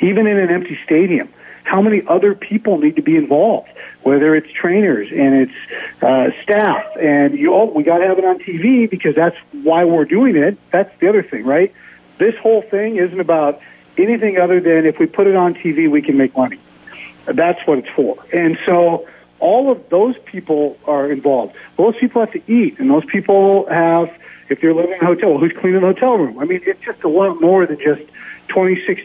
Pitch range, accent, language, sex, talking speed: 155-195 Hz, American, English, male, 210 wpm